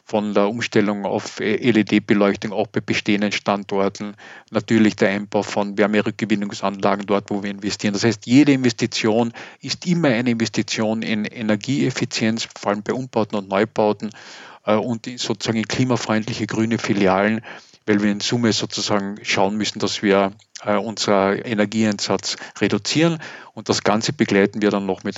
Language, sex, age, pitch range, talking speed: German, male, 40-59, 105-120 Hz, 145 wpm